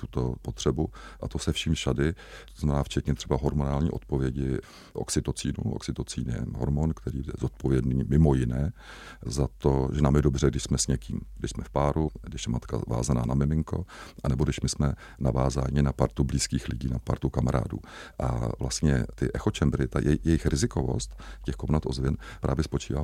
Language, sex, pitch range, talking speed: Czech, male, 65-80 Hz, 170 wpm